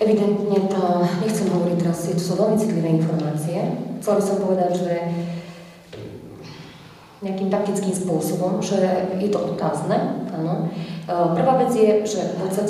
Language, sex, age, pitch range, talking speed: Czech, female, 30-49, 170-190 Hz, 125 wpm